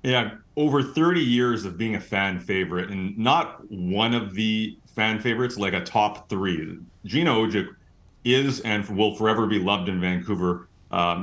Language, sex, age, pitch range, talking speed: English, male, 40-59, 95-120 Hz, 160 wpm